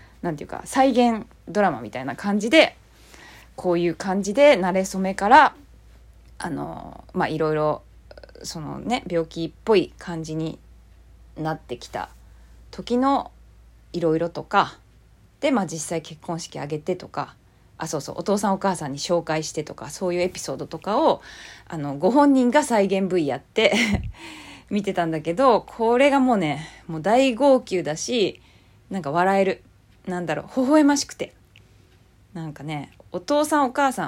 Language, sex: Japanese, female